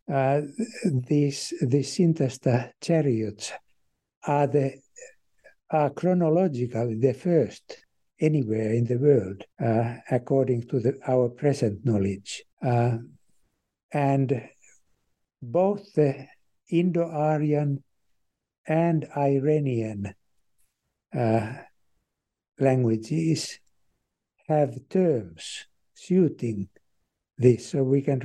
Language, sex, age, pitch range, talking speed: English, male, 60-79, 120-155 Hz, 80 wpm